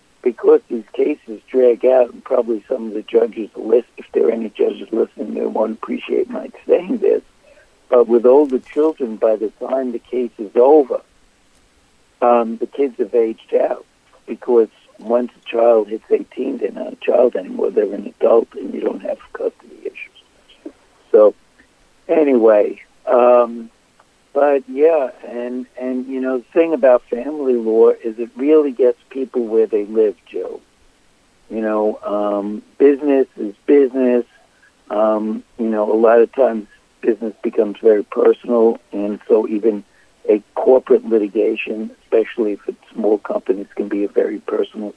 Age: 60-79